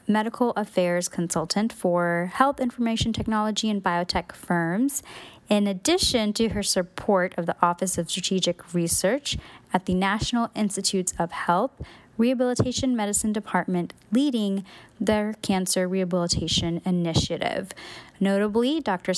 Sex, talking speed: female, 115 wpm